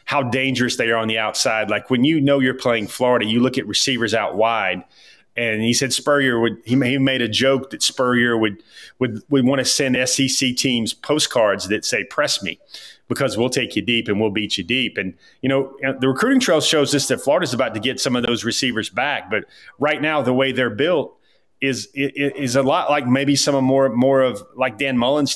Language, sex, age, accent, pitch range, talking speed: English, male, 30-49, American, 115-135 Hz, 220 wpm